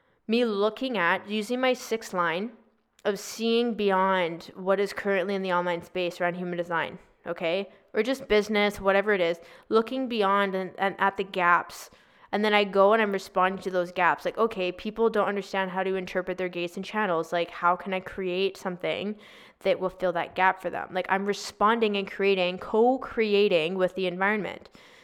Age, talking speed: 20-39, 185 wpm